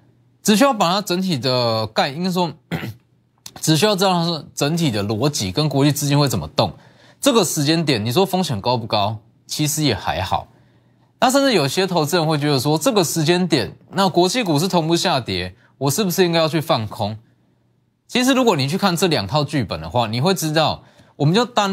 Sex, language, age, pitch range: male, Chinese, 20-39, 120-175 Hz